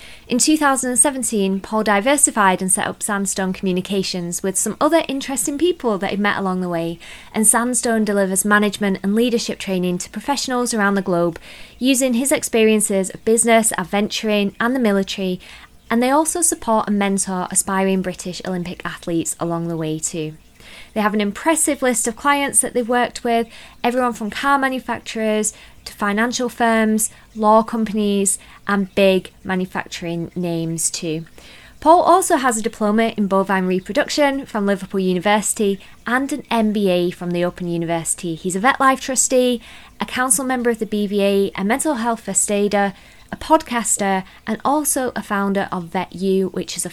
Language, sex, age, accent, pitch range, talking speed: English, female, 20-39, British, 185-245 Hz, 160 wpm